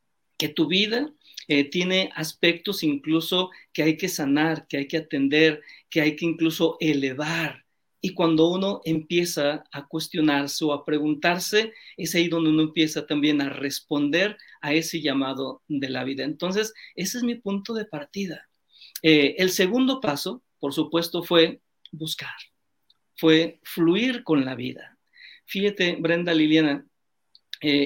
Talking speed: 145 wpm